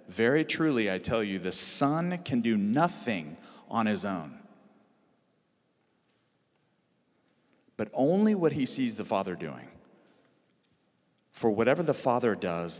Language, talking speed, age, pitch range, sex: English, 120 wpm, 40-59, 105-135 Hz, male